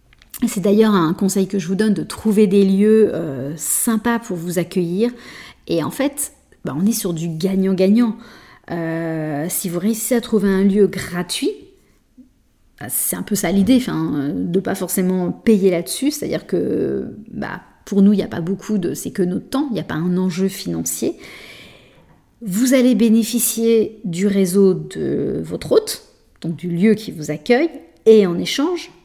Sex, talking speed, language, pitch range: female, 175 wpm, French, 185-230 Hz